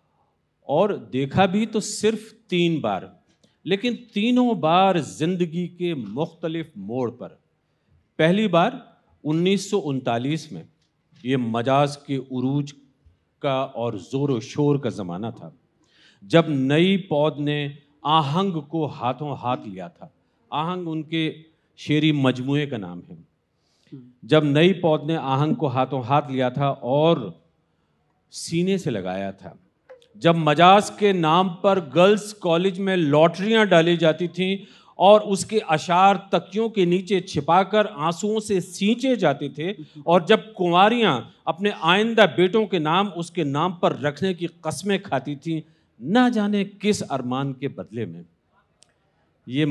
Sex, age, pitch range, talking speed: male, 50-69, 145-190 Hz, 140 wpm